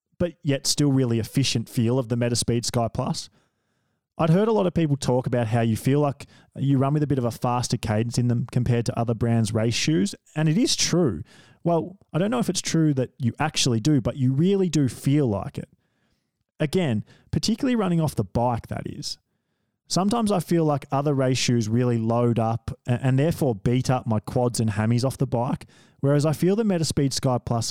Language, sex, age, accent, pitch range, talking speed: English, male, 20-39, Australian, 115-145 Hz, 215 wpm